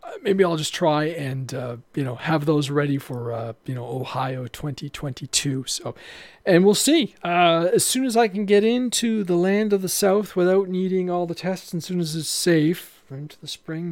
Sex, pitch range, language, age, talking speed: male, 140-195 Hz, English, 40-59, 205 wpm